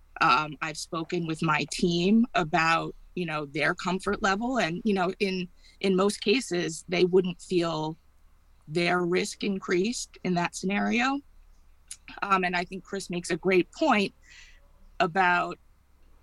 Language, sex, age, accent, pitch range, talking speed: English, female, 30-49, American, 170-205 Hz, 140 wpm